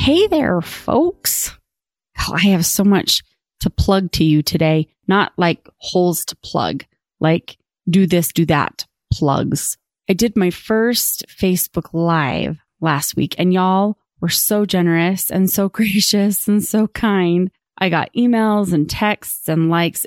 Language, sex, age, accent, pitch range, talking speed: English, female, 30-49, American, 170-215 Hz, 145 wpm